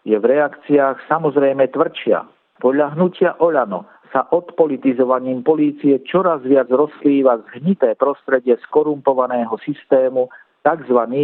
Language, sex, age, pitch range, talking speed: Slovak, male, 50-69, 125-155 Hz, 100 wpm